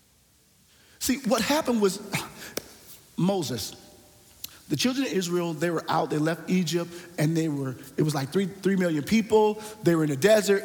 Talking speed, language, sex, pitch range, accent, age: 170 wpm, English, male, 155-205 Hz, American, 40-59